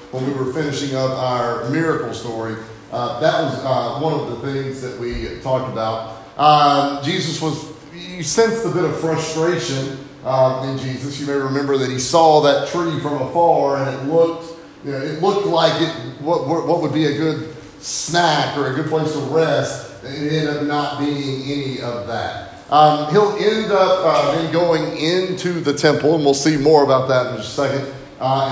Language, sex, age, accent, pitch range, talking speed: English, male, 30-49, American, 115-155 Hz, 195 wpm